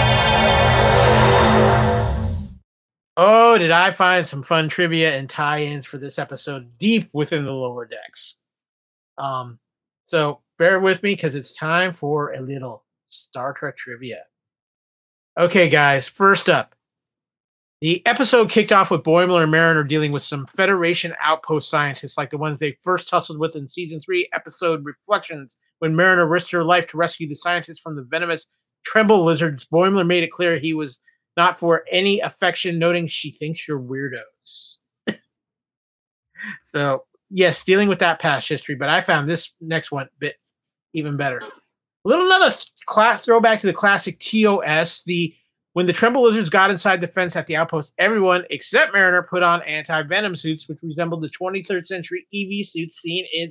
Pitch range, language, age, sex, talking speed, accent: 150-180 Hz, English, 30-49, male, 160 wpm, American